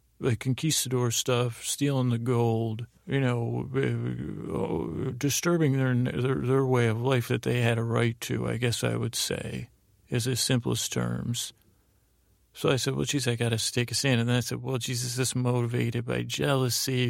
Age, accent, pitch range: 40-59, American, 115-130 Hz